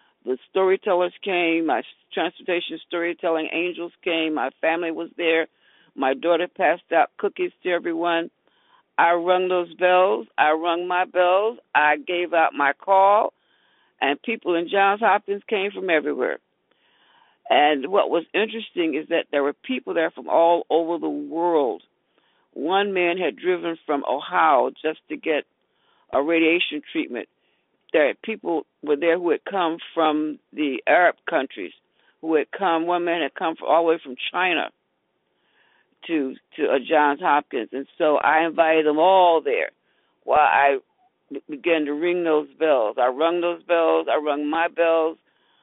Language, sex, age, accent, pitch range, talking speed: English, female, 50-69, American, 160-195 Hz, 155 wpm